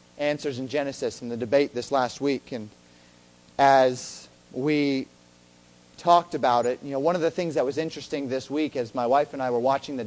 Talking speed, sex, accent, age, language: 205 wpm, male, American, 40-59, English